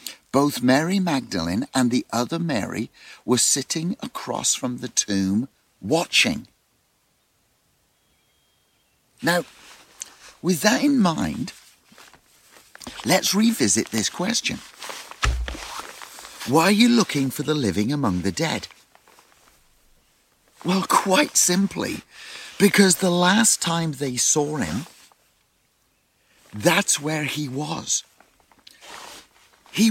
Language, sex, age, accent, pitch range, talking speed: English, male, 50-69, British, 125-180 Hz, 95 wpm